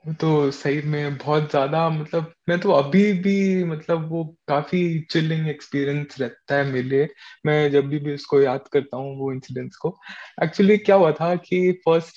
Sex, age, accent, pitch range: male, 20-39, native, 145-180 Hz